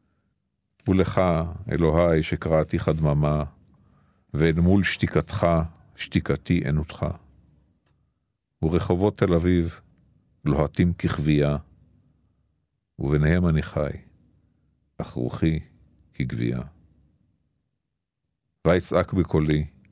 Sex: male